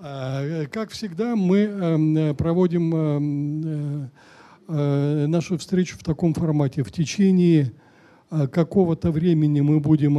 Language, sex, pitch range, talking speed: Russian, male, 135-180 Hz, 90 wpm